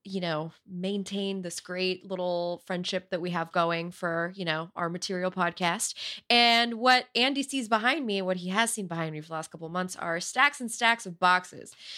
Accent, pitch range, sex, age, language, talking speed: American, 180-255 Hz, female, 20-39, English, 210 wpm